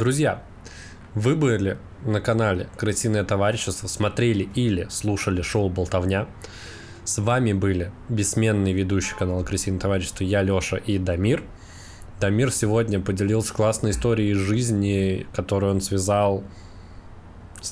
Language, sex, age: Russian, male, 20-39